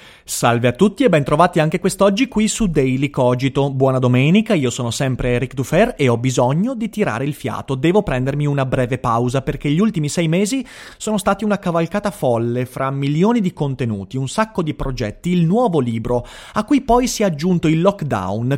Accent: native